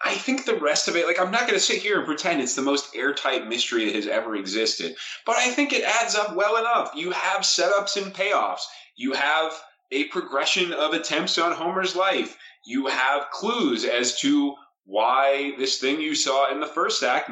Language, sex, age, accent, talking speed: English, male, 30-49, American, 210 wpm